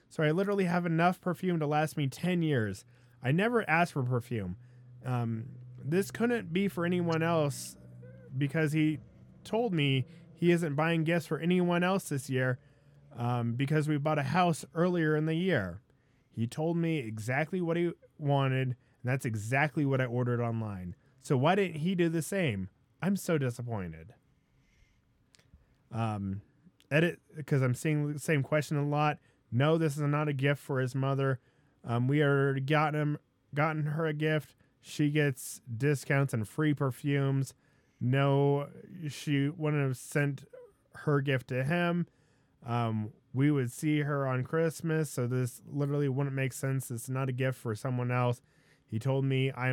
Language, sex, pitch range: English, male, 125-155 Hz